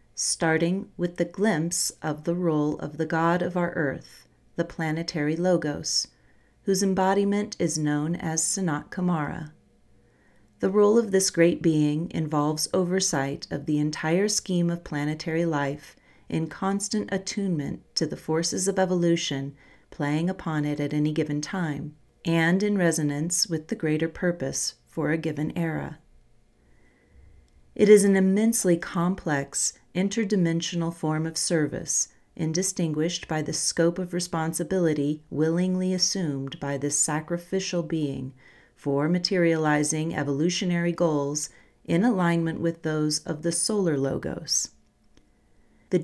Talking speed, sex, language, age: 130 wpm, female, English, 40-59